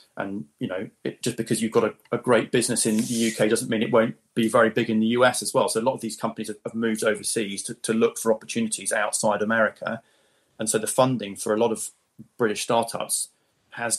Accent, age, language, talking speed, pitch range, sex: British, 30-49, English, 225 wpm, 105-115 Hz, male